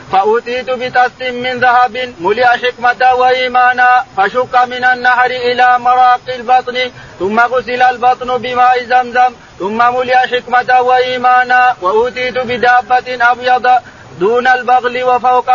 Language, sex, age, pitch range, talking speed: Arabic, male, 40-59, 245-255 Hz, 110 wpm